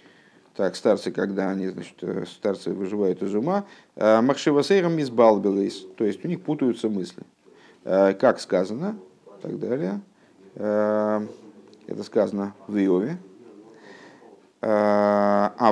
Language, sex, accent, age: Russian, male, native, 50-69